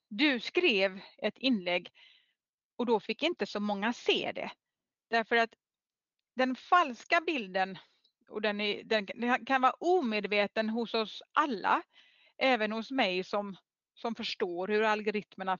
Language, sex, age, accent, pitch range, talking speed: Swedish, female, 30-49, native, 210-285 Hz, 135 wpm